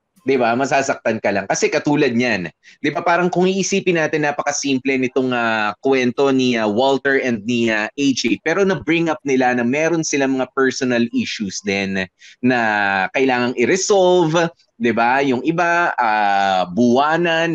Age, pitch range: 20-39, 110-145 Hz